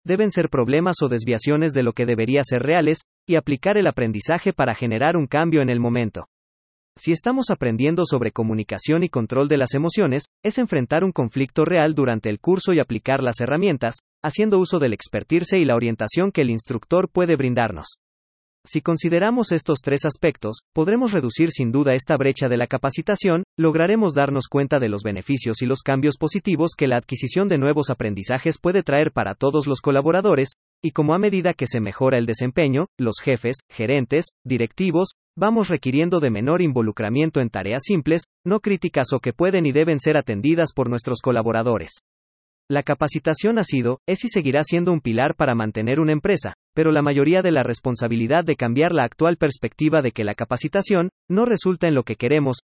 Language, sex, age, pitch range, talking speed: Spanish, male, 40-59, 120-165 Hz, 180 wpm